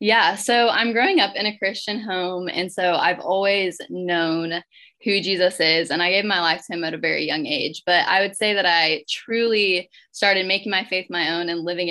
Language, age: English, 20-39